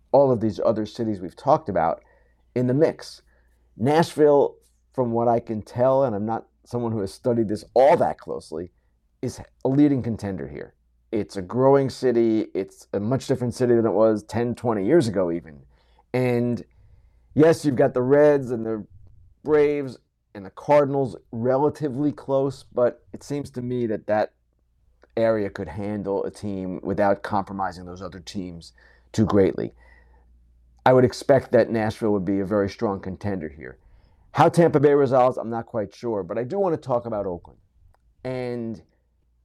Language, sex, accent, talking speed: English, male, American, 170 wpm